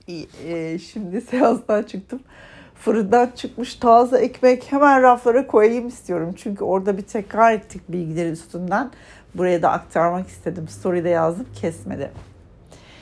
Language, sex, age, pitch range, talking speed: Turkish, female, 60-79, 165-235 Hz, 125 wpm